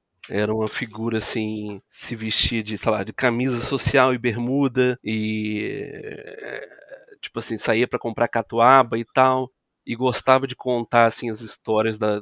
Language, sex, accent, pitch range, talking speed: Portuguese, male, Brazilian, 110-125 Hz, 150 wpm